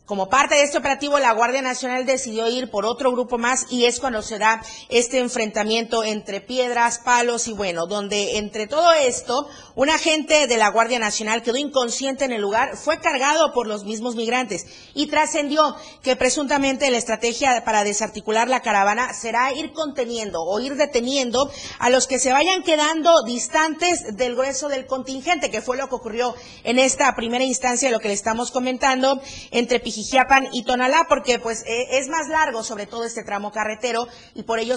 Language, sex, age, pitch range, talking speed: Spanish, female, 40-59, 225-275 Hz, 185 wpm